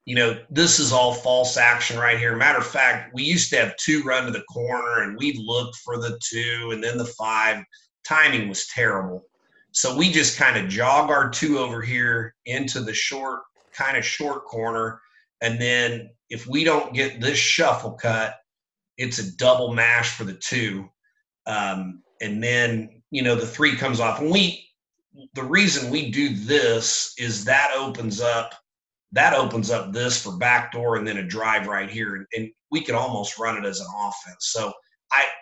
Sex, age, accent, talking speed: male, 30-49, American, 190 wpm